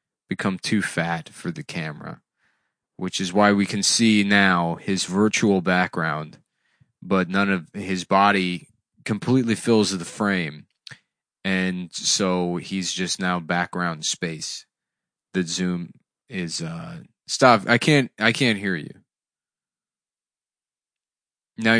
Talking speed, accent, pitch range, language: 120 wpm, American, 90-110 Hz, English